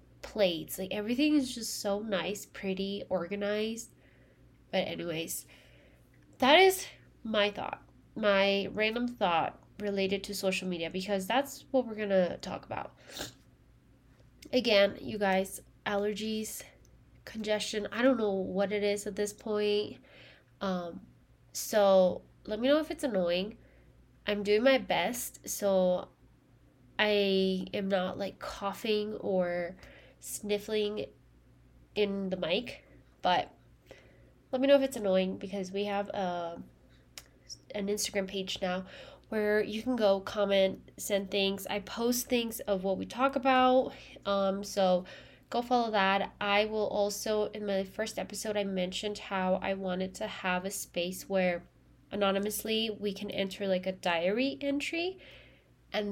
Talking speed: 135 wpm